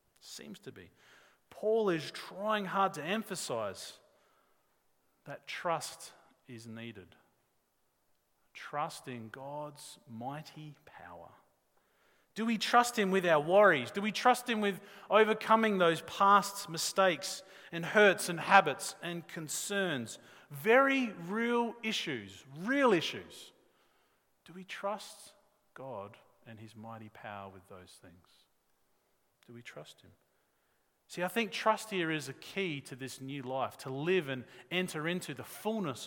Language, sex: English, male